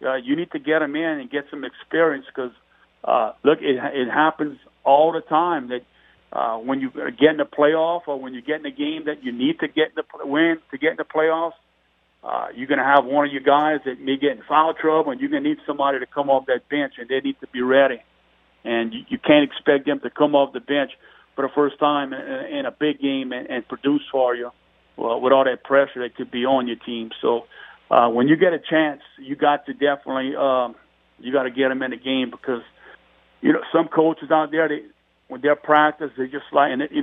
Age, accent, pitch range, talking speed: 50-69, American, 130-150 Hz, 245 wpm